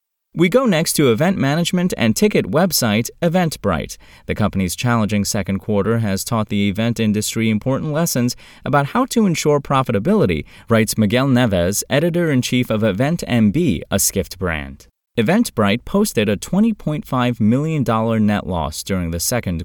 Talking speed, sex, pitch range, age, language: 140 wpm, male, 95-130 Hz, 20-39, English